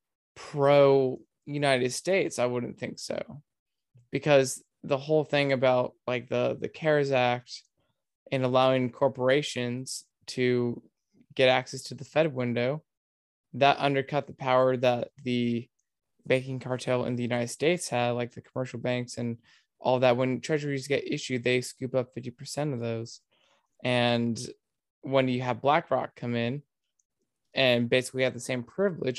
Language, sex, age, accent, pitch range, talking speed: English, male, 20-39, American, 125-140 Hz, 145 wpm